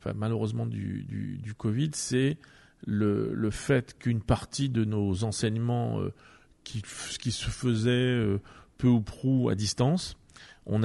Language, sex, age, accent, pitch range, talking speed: French, male, 40-59, French, 105-130 Hz, 135 wpm